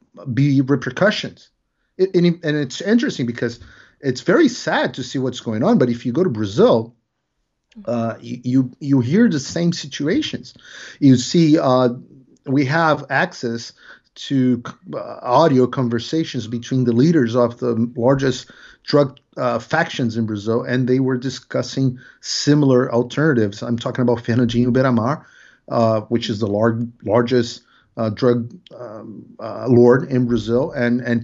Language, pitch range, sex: English, 120-155 Hz, male